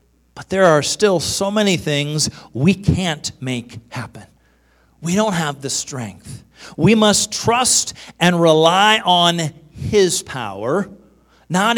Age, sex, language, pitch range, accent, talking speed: 40-59, male, English, 160-230 Hz, American, 125 wpm